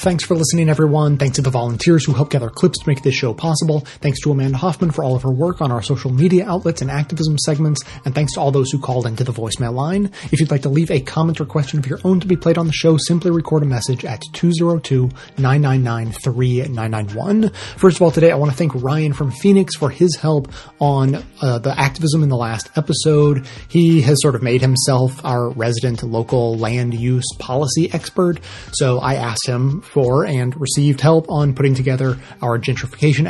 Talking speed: 210 wpm